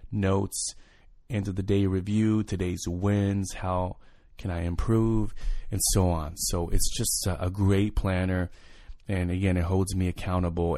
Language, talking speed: English, 155 wpm